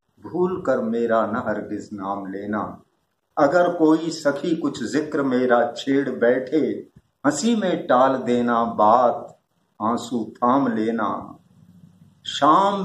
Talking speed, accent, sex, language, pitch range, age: 110 wpm, native, male, Hindi, 125-185 Hz, 50-69